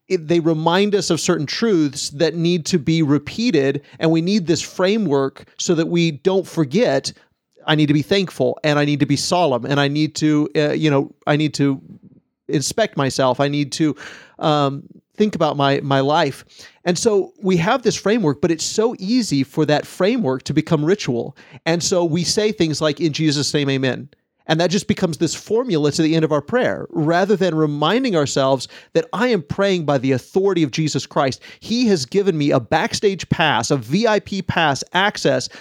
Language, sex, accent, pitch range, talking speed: English, male, American, 145-190 Hz, 195 wpm